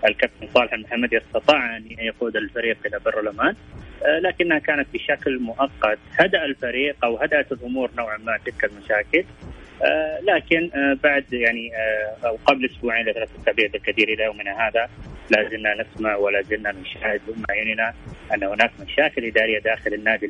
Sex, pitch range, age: male, 105-140 Hz, 30-49